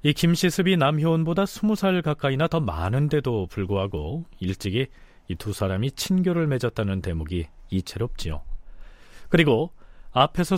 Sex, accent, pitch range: male, native, 100-160 Hz